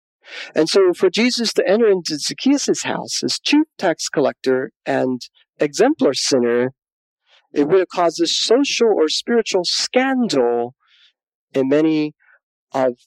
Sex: male